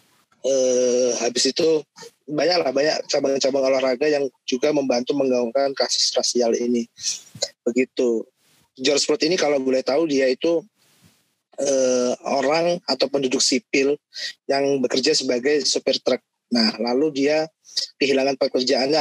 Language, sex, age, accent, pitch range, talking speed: Indonesian, male, 20-39, native, 130-145 Hz, 120 wpm